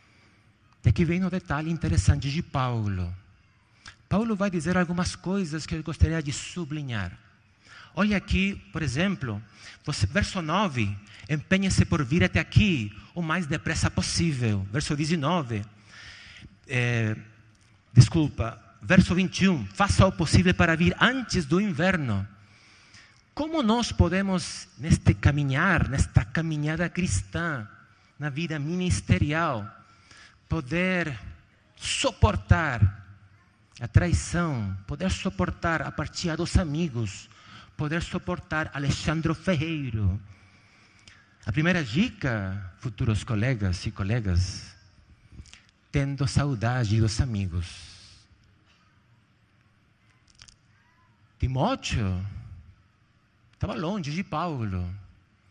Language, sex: Portuguese, male